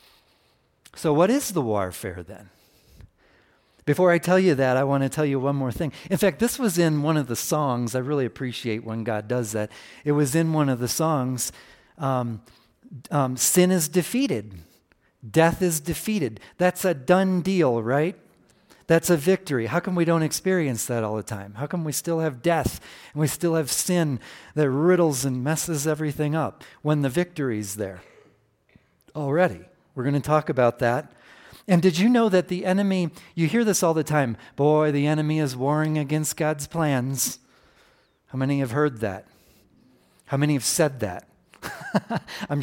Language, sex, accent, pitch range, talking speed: English, male, American, 125-170 Hz, 180 wpm